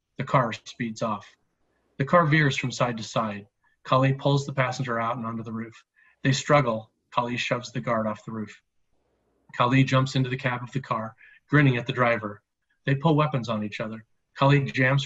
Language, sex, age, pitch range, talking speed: English, male, 40-59, 115-140 Hz, 195 wpm